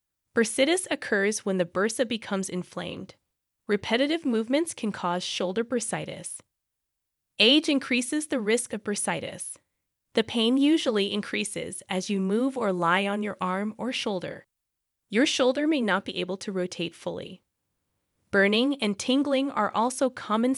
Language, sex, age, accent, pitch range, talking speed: English, female, 20-39, American, 195-260 Hz, 140 wpm